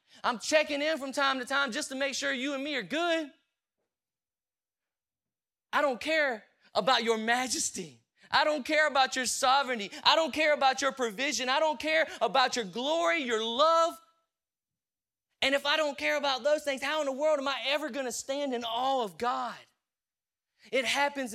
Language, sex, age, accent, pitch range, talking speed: English, male, 20-39, American, 250-310 Hz, 185 wpm